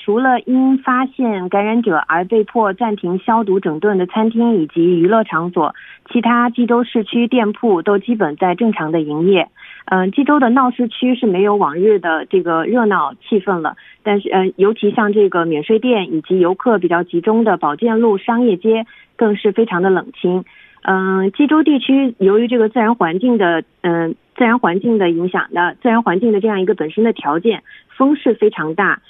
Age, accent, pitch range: 30-49, Chinese, 180-235 Hz